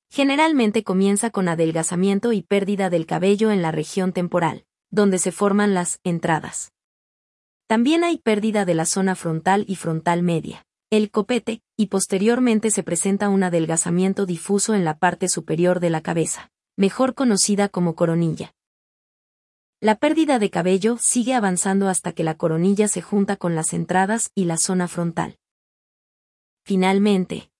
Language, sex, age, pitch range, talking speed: Spanish, female, 30-49, 175-215 Hz, 145 wpm